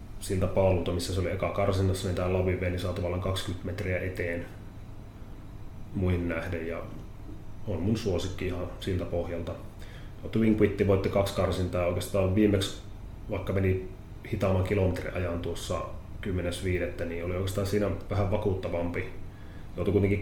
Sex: male